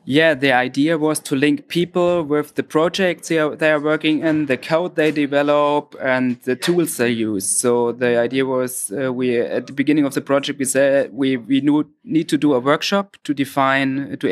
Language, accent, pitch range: German, German, 125-155 Hz